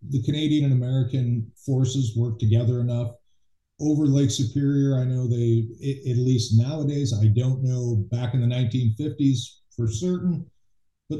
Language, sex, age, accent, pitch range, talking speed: English, male, 50-69, American, 110-130 Hz, 150 wpm